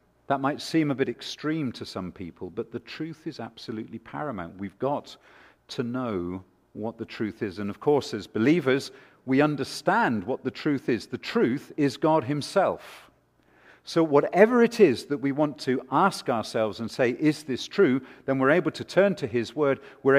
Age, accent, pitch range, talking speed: 50-69, British, 115-155 Hz, 185 wpm